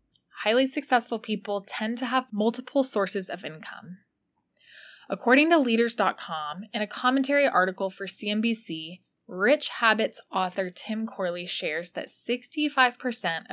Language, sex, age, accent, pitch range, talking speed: English, female, 20-39, American, 185-240 Hz, 120 wpm